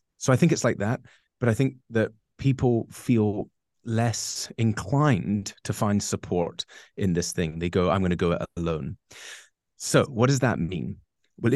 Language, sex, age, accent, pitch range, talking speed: English, male, 30-49, British, 95-115 Hz, 170 wpm